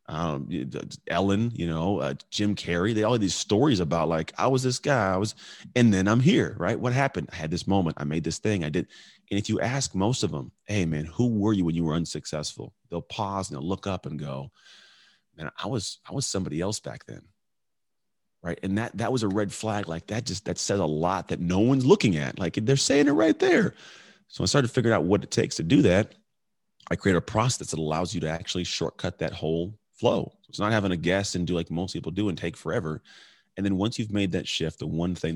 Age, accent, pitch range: 30-49, American, 80-105 Hz